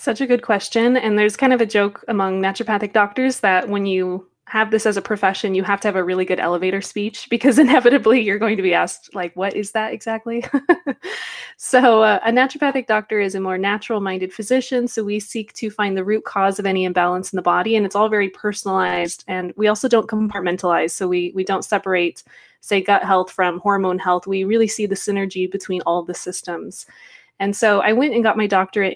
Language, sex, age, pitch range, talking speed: English, female, 20-39, 190-225 Hz, 215 wpm